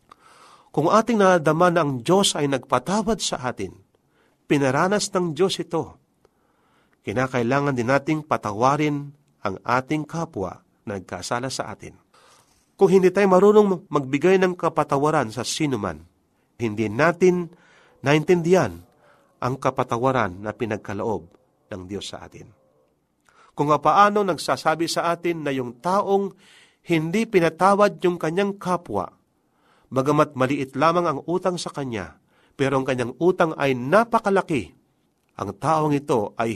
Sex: male